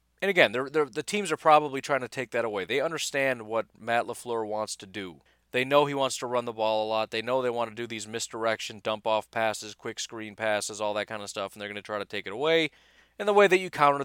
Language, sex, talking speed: English, male, 270 wpm